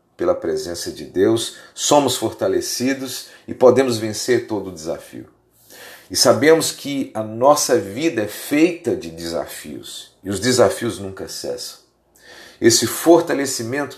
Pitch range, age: 120-175 Hz, 50-69